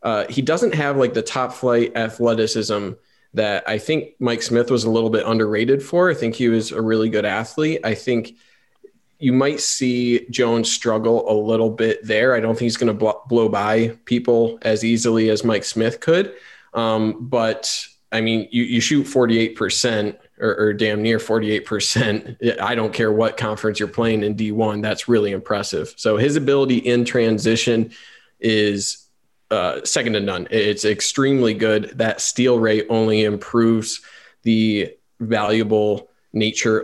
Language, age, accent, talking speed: English, 20-39, American, 165 wpm